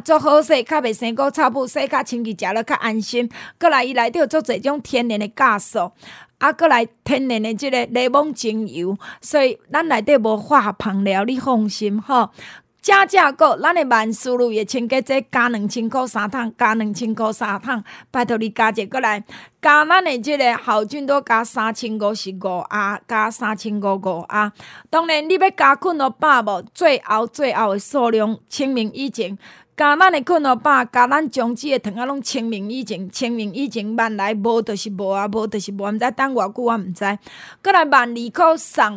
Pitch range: 215-280 Hz